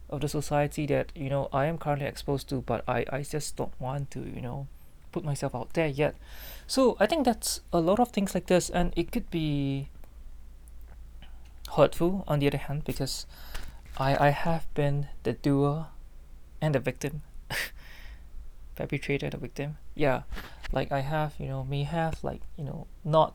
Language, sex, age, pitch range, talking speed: English, male, 20-39, 120-155 Hz, 180 wpm